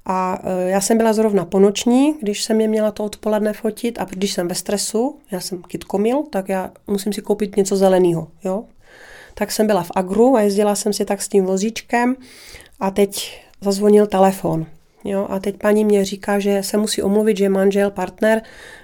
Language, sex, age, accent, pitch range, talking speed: Czech, female, 30-49, native, 190-215 Hz, 185 wpm